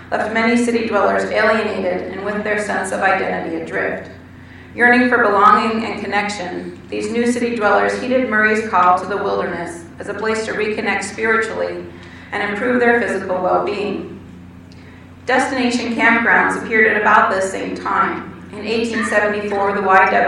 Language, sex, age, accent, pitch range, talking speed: English, female, 40-59, American, 130-215 Hz, 140 wpm